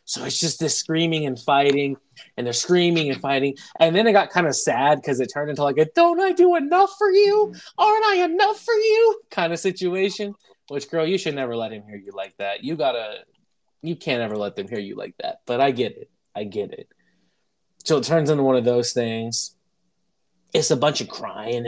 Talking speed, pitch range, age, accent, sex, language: 225 wpm, 115-175 Hz, 20-39, American, male, English